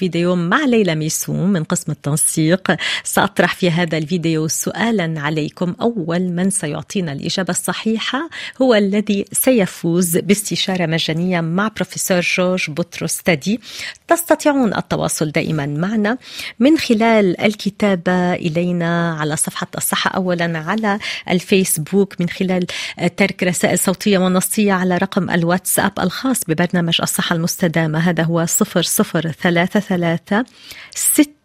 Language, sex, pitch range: Arabic, female, 170-215 Hz